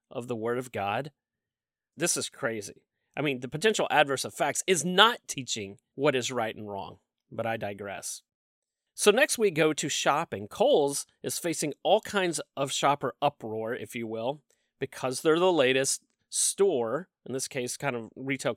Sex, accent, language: male, American, English